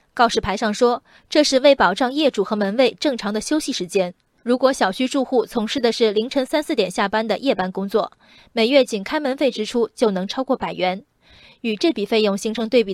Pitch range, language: 210-275 Hz, Chinese